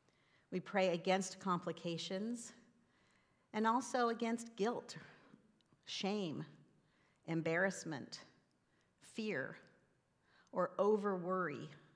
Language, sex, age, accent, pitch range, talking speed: English, female, 50-69, American, 155-195 Hz, 65 wpm